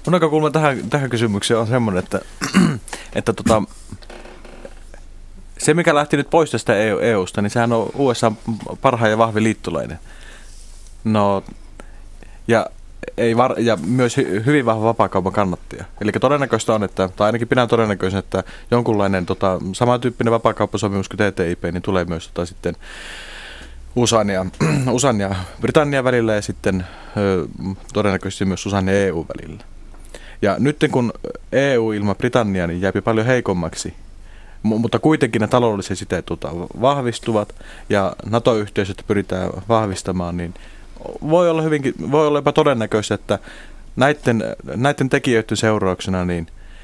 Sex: male